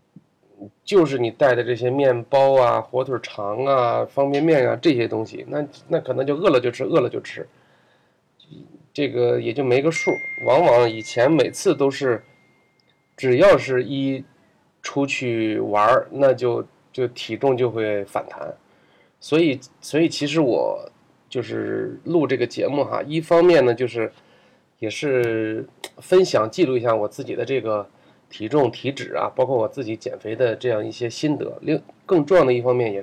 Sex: male